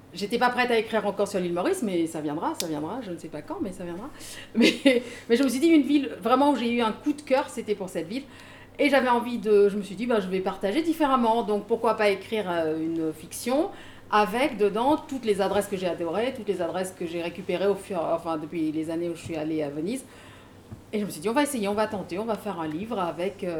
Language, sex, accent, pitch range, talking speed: French, female, French, 170-230 Hz, 265 wpm